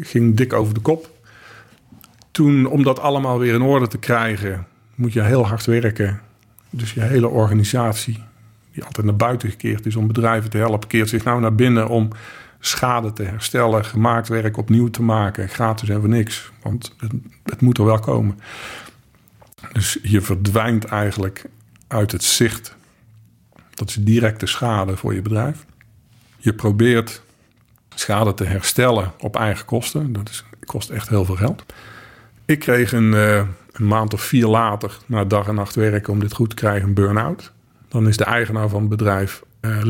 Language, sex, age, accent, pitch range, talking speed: Dutch, male, 50-69, Dutch, 105-120 Hz, 175 wpm